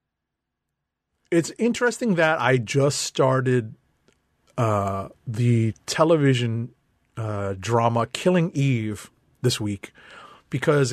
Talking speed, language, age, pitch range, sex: 90 wpm, English, 30-49, 120-160 Hz, male